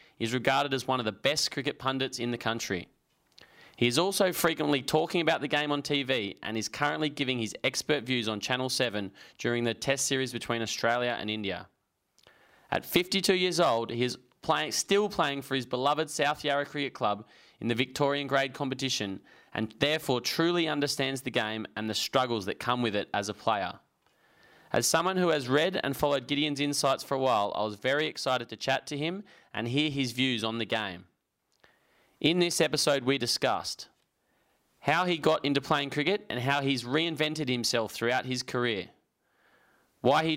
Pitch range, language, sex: 120-150 Hz, English, male